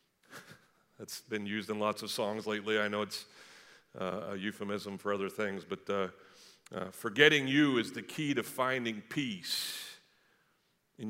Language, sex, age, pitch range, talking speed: English, male, 50-69, 105-145 Hz, 155 wpm